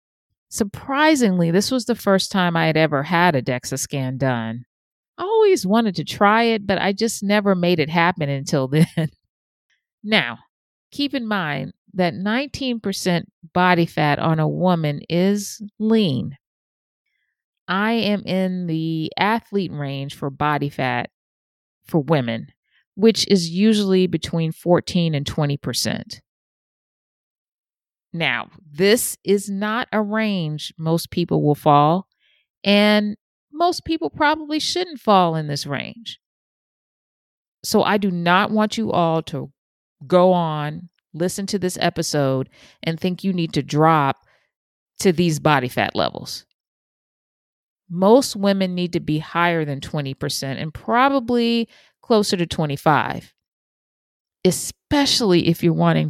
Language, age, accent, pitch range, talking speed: English, 40-59, American, 150-205 Hz, 130 wpm